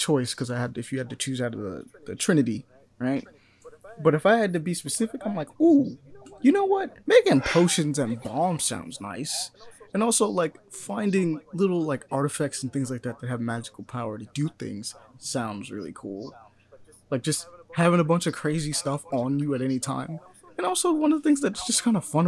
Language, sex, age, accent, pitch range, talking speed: English, male, 20-39, American, 135-195 Hz, 215 wpm